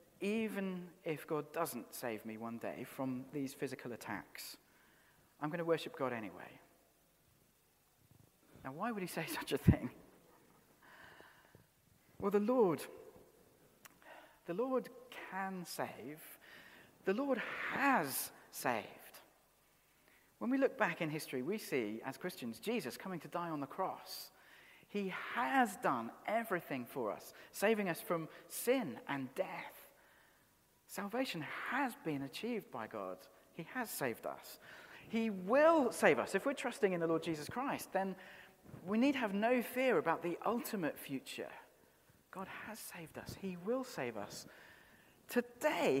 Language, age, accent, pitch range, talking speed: English, 40-59, British, 135-225 Hz, 140 wpm